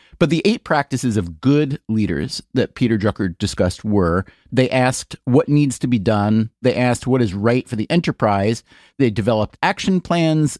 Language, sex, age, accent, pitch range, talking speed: English, male, 30-49, American, 110-145 Hz, 175 wpm